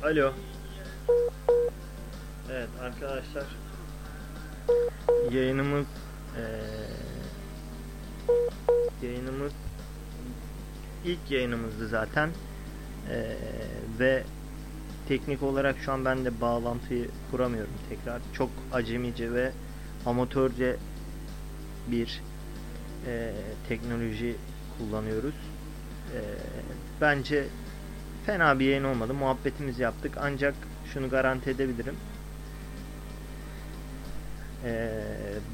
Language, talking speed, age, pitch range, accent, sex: Turkish, 70 wpm, 30-49, 115-135 Hz, native, male